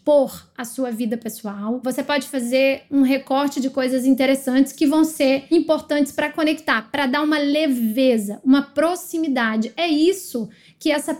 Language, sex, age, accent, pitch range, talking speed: Portuguese, female, 20-39, Brazilian, 265-315 Hz, 155 wpm